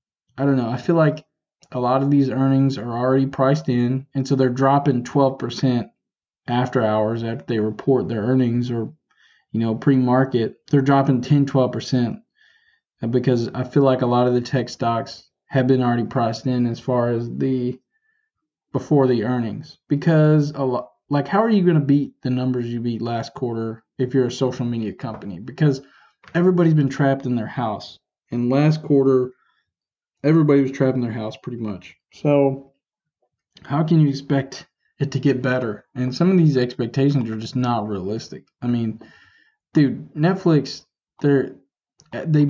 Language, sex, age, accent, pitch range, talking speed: English, male, 20-39, American, 125-145 Hz, 165 wpm